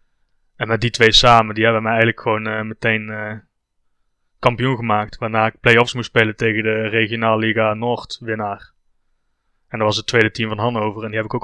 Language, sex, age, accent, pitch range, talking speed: Dutch, male, 20-39, Dutch, 110-125 Hz, 205 wpm